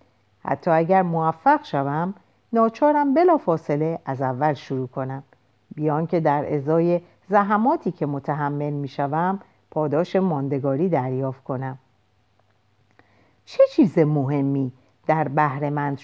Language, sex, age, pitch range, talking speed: Persian, female, 50-69, 135-205 Hz, 110 wpm